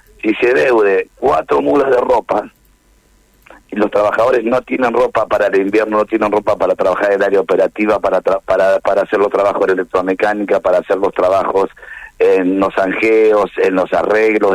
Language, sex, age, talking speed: Spanish, male, 50-69, 180 wpm